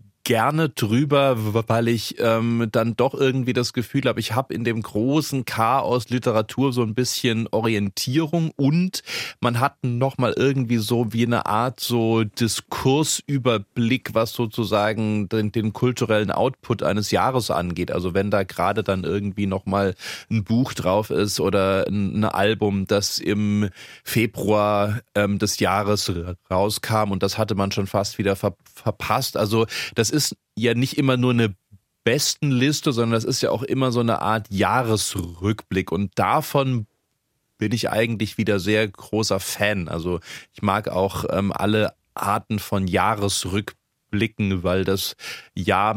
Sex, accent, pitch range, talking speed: male, German, 100-120 Hz, 150 wpm